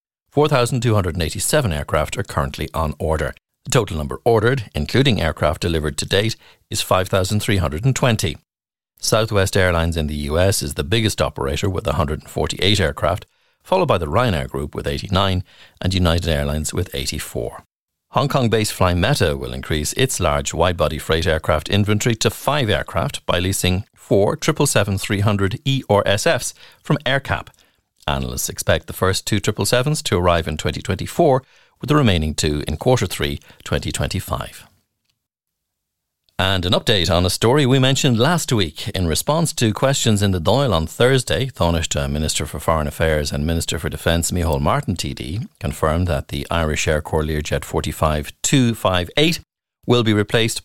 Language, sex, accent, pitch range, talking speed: English, male, Irish, 80-115 Hz, 145 wpm